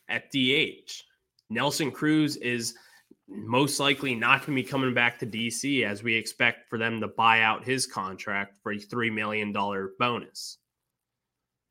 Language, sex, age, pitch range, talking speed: English, male, 20-39, 110-140 Hz, 155 wpm